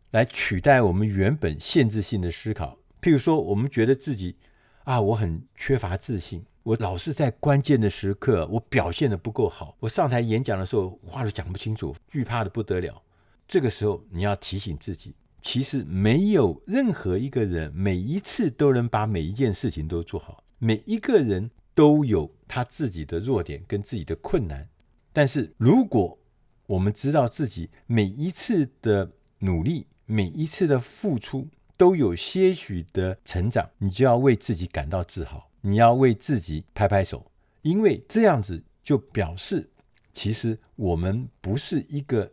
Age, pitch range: 50-69, 95-135 Hz